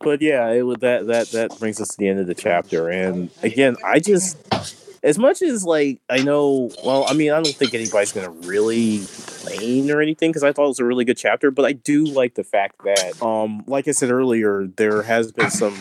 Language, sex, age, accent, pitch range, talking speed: English, male, 30-49, American, 105-140 Hz, 235 wpm